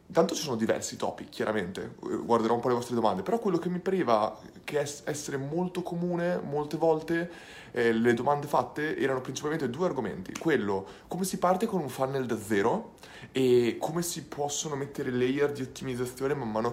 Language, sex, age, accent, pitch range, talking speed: Italian, male, 20-39, native, 120-160 Hz, 175 wpm